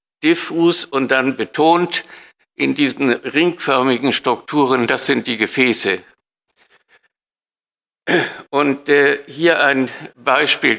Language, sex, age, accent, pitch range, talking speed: German, male, 60-79, German, 120-150 Hz, 90 wpm